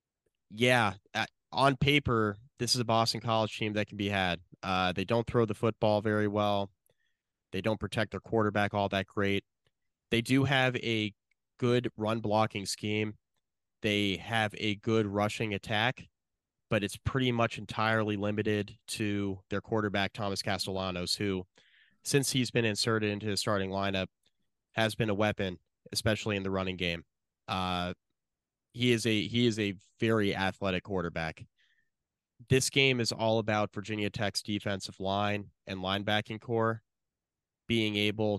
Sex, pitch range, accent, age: male, 100-115 Hz, American, 20-39